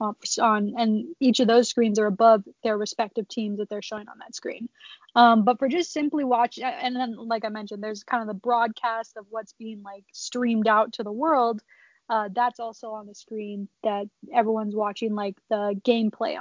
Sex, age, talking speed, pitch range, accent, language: female, 20-39, 200 wpm, 220-250 Hz, American, English